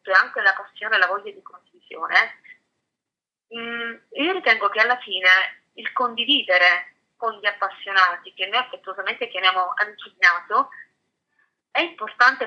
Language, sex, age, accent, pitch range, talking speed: Italian, female, 30-49, native, 190-240 Hz, 130 wpm